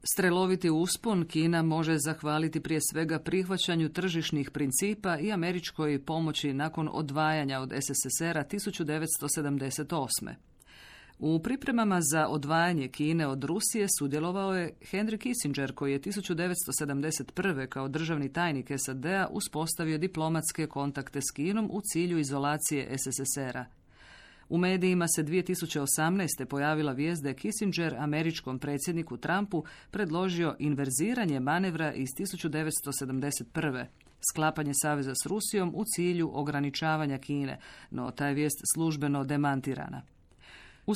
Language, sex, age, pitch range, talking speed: Croatian, female, 40-59, 140-175 Hz, 110 wpm